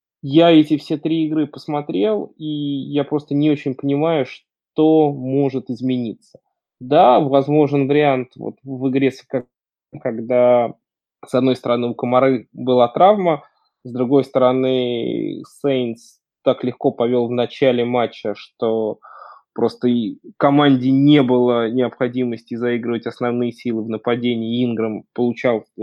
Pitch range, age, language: 120-140 Hz, 20-39, Russian